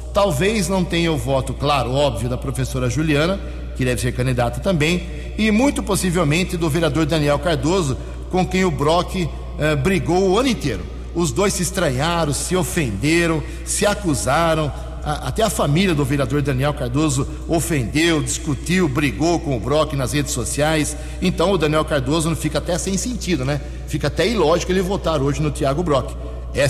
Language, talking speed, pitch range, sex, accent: Portuguese, 170 wpm, 130-175 Hz, male, Brazilian